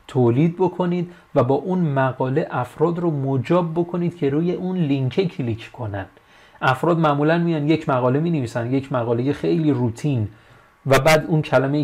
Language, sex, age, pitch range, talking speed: Persian, male, 30-49, 120-160 Hz, 155 wpm